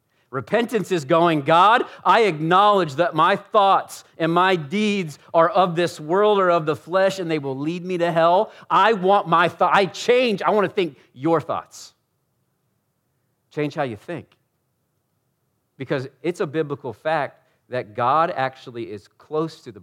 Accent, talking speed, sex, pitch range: American, 165 wpm, male, 120-170 Hz